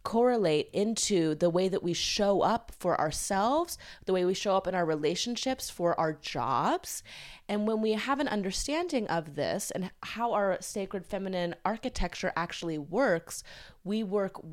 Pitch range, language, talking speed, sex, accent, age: 160-195 Hz, English, 160 wpm, female, American, 20-39